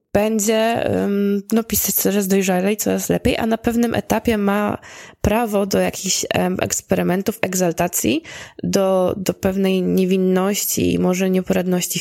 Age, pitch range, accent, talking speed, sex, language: 20-39, 180-220 Hz, native, 130 wpm, female, Polish